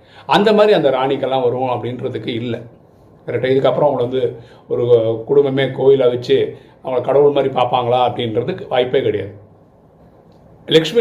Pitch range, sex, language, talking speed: 120-155 Hz, male, Tamil, 125 wpm